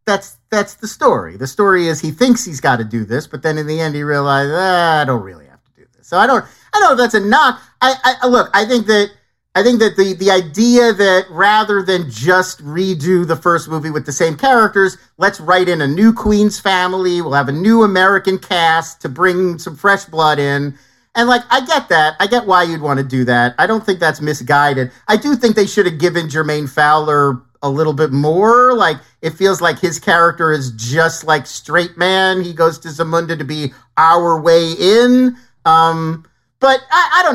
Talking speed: 220 wpm